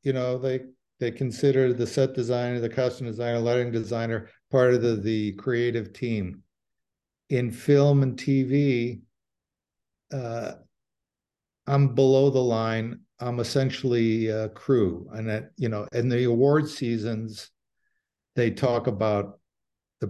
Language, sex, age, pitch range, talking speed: English, male, 50-69, 110-130 Hz, 130 wpm